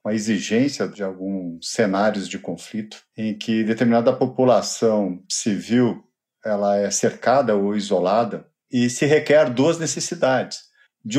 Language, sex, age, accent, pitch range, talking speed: Portuguese, male, 50-69, Brazilian, 105-140 Hz, 125 wpm